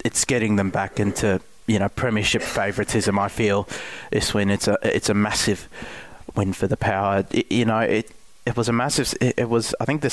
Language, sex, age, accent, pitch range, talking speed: English, male, 20-39, Australian, 100-115 Hz, 215 wpm